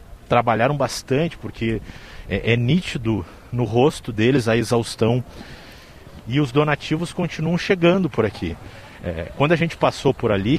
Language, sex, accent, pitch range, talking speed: Portuguese, male, Brazilian, 110-160 Hz, 135 wpm